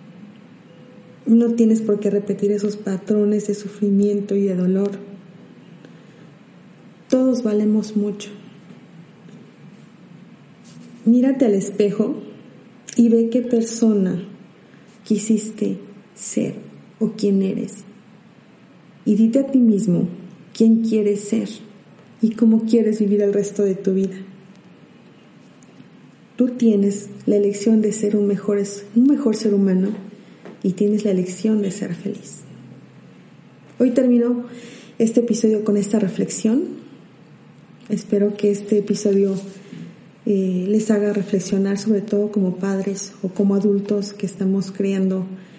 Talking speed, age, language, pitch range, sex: 115 wpm, 40-59, Spanish, 200-220 Hz, female